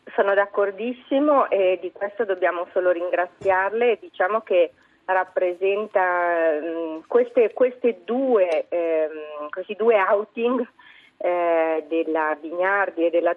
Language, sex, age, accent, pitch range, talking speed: Italian, female, 40-59, native, 165-205 Hz, 110 wpm